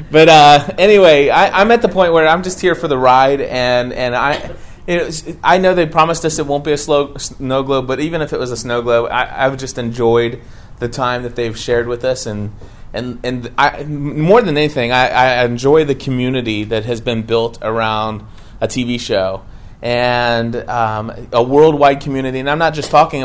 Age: 30-49